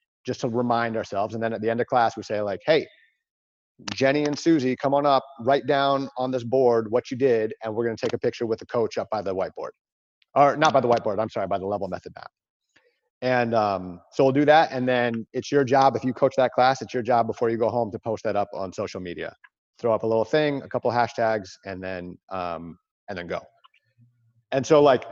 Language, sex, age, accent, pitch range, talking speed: English, male, 40-59, American, 110-140 Hz, 245 wpm